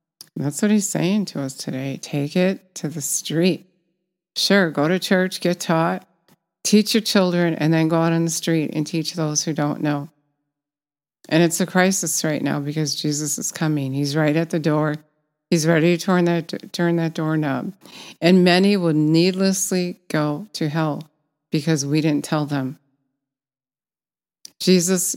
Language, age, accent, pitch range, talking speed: English, 50-69, American, 145-170 Hz, 165 wpm